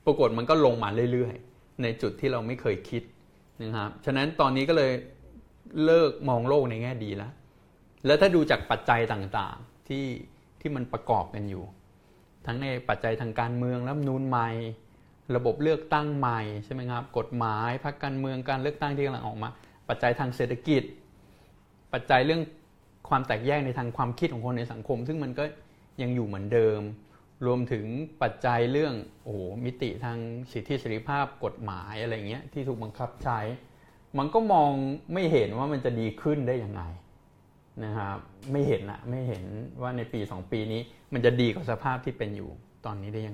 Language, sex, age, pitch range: Thai, male, 20-39, 110-135 Hz